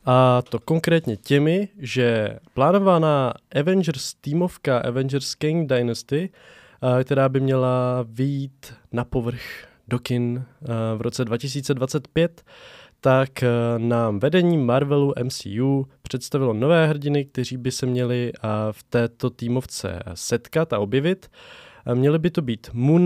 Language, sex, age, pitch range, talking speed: Czech, male, 20-39, 115-145 Hz, 115 wpm